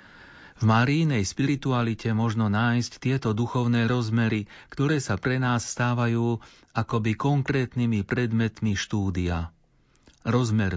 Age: 40-59